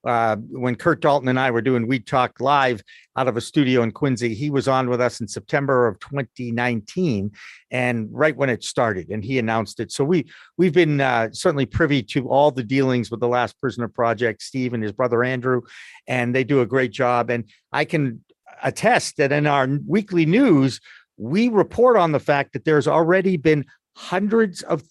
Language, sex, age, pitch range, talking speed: English, male, 50-69, 125-165 Hz, 195 wpm